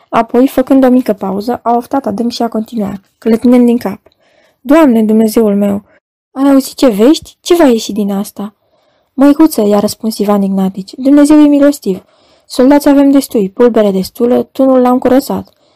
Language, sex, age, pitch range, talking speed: Romanian, female, 20-39, 210-265 Hz, 160 wpm